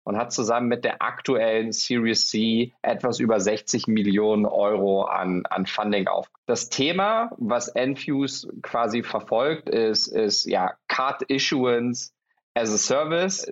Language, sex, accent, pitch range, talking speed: German, male, German, 110-135 Hz, 120 wpm